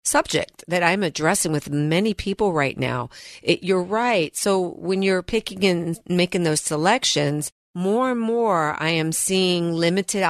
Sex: female